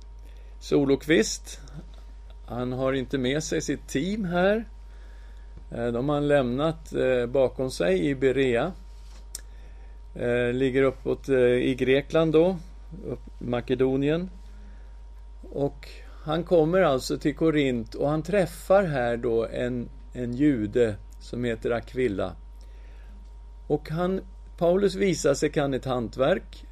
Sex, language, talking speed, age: male, English, 110 wpm, 50-69